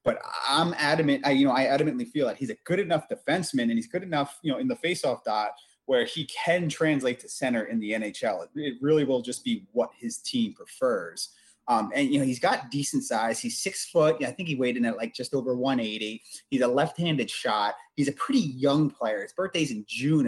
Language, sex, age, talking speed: English, male, 30-49, 230 wpm